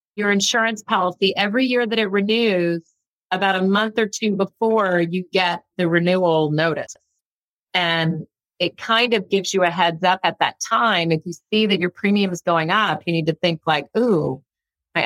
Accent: American